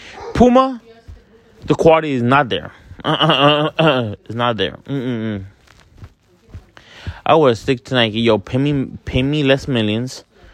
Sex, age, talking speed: male, 20-39, 125 wpm